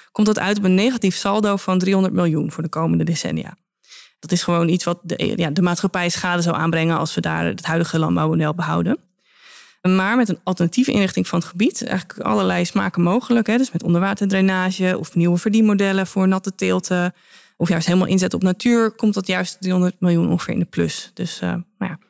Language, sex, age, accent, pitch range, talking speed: Dutch, female, 20-39, Dutch, 170-205 Hz, 190 wpm